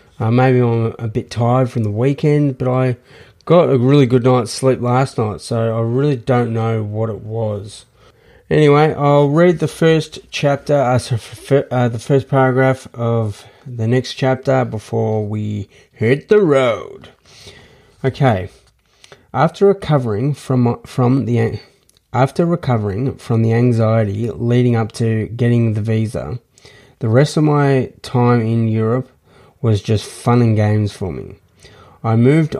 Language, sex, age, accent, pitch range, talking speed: English, male, 30-49, Australian, 115-135 Hz, 145 wpm